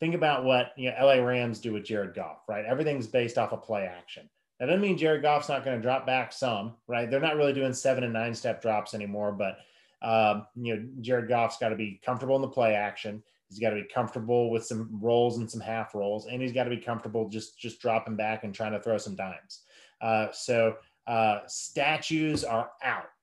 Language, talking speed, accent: English, 230 wpm, American